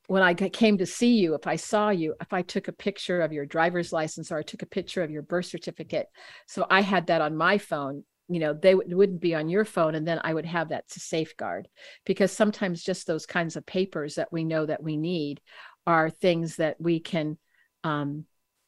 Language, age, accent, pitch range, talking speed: English, 50-69, American, 160-195 Hz, 225 wpm